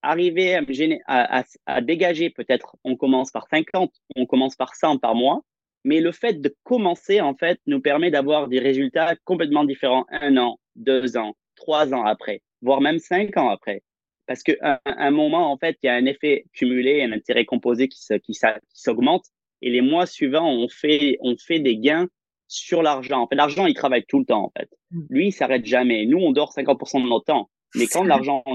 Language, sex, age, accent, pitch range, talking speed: French, male, 30-49, French, 125-170 Hz, 210 wpm